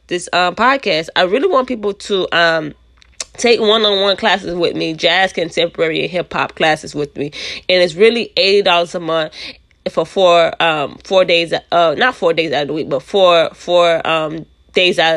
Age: 20-39